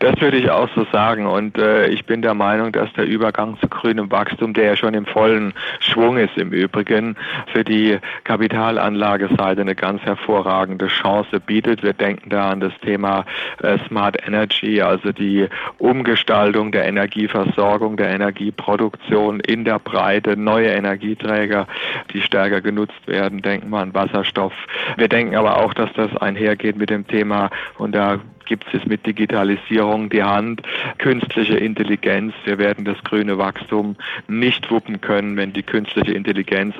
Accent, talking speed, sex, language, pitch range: German, 155 wpm, male, German, 100-110 Hz